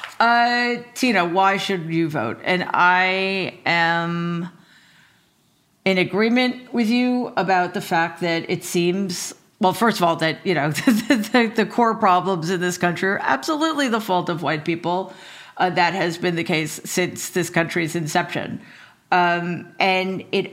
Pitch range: 170-200 Hz